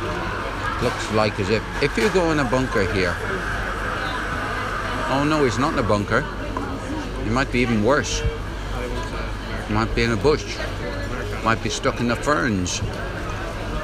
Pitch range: 95-115 Hz